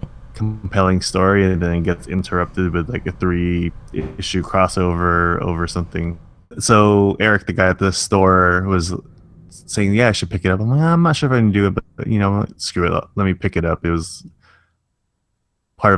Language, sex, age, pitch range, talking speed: English, male, 20-39, 90-105 Hz, 205 wpm